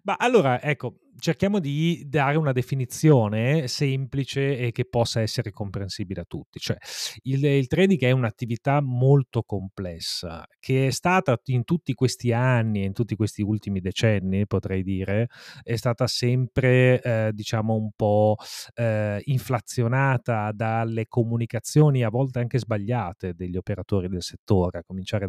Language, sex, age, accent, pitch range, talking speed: Italian, male, 30-49, native, 100-130 Hz, 140 wpm